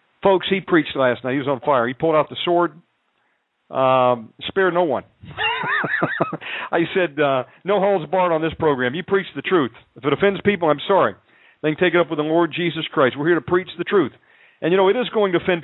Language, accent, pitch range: English, American, 135-185 Hz